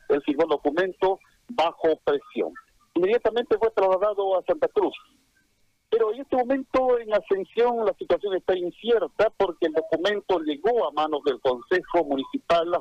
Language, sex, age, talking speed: Spanish, male, 50-69, 150 wpm